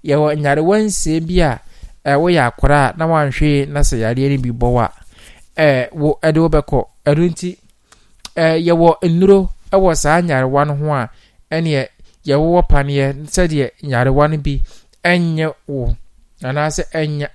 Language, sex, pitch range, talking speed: English, male, 130-165 Hz, 140 wpm